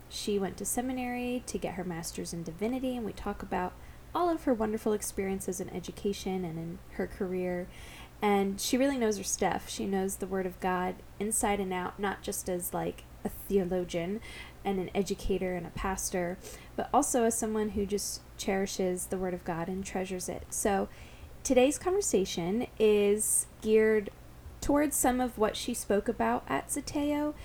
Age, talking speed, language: 10-29, 175 wpm, English